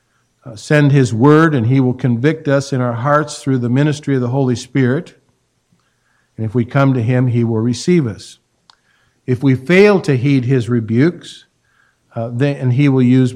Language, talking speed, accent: English, 185 wpm, American